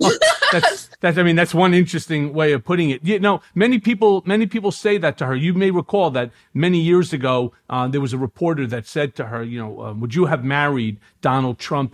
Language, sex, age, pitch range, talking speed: English, male, 40-59, 130-175 Hz, 235 wpm